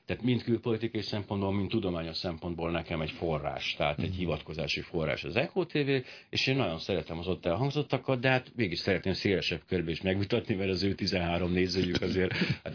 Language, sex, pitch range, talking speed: Hungarian, male, 90-115 Hz, 175 wpm